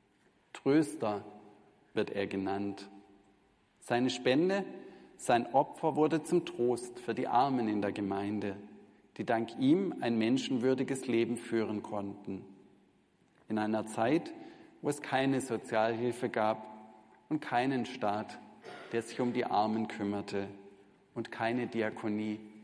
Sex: male